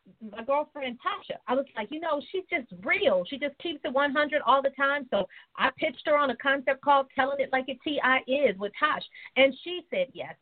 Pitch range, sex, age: 215-280 Hz, female, 40-59